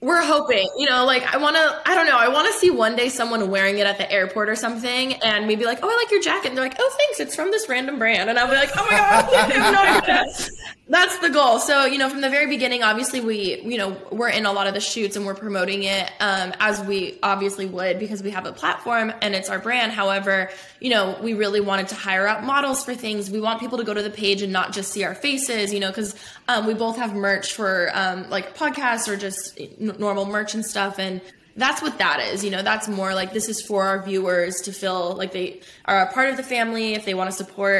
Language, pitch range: English, 195-235 Hz